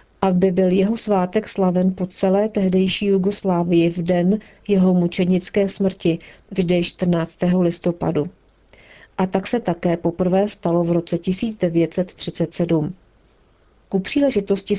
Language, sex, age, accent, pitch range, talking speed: Czech, female, 40-59, native, 175-200 Hz, 115 wpm